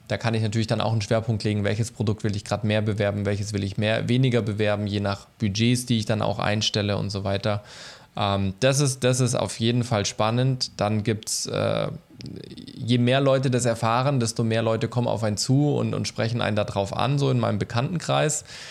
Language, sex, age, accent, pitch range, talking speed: German, male, 20-39, German, 110-125 Hz, 220 wpm